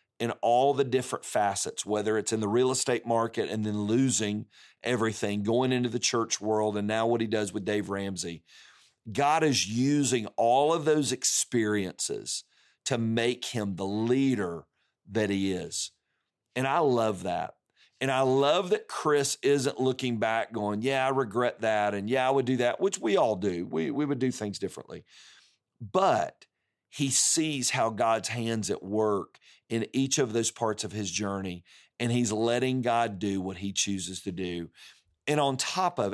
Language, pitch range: English, 105-130 Hz